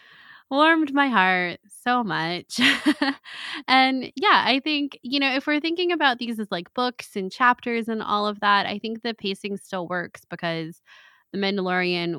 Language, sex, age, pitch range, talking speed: English, female, 20-39, 170-220 Hz, 165 wpm